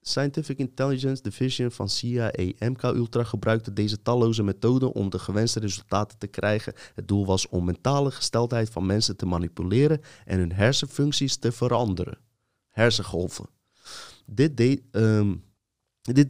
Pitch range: 105-135 Hz